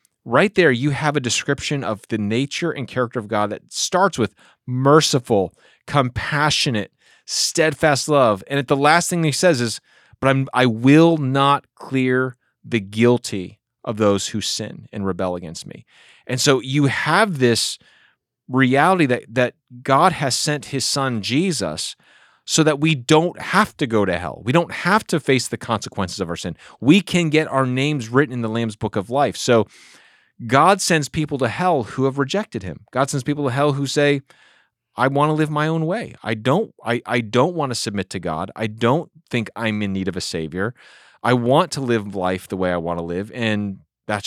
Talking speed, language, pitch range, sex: 195 wpm, English, 110-145 Hz, male